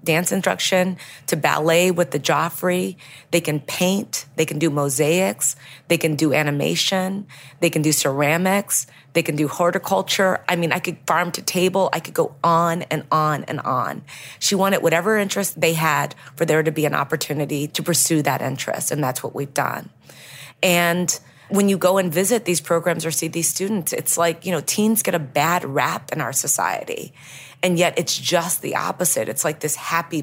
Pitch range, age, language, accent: 150-175 Hz, 30-49, English, American